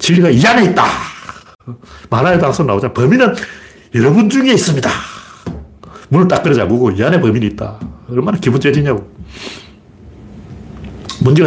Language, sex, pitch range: Korean, male, 105-175 Hz